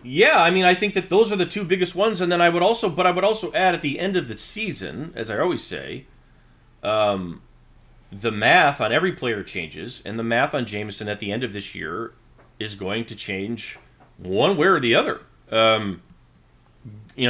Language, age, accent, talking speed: English, 30-49, American, 210 wpm